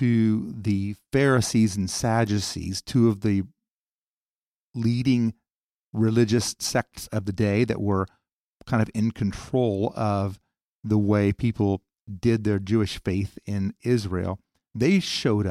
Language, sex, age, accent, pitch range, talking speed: English, male, 50-69, American, 100-125 Hz, 125 wpm